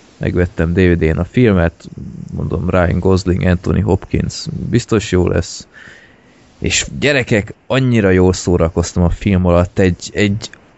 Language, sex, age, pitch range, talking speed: Hungarian, male, 20-39, 90-105 Hz, 130 wpm